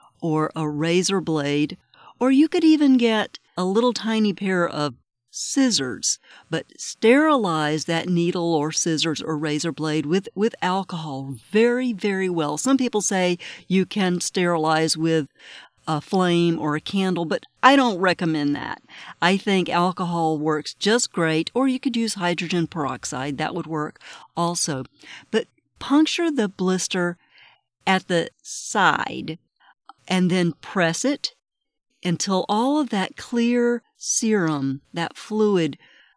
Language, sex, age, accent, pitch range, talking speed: English, female, 50-69, American, 165-225 Hz, 135 wpm